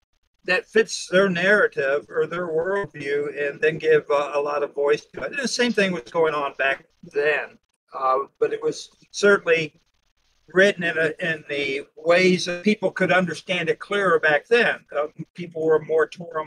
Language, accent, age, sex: English, American, 60-79, male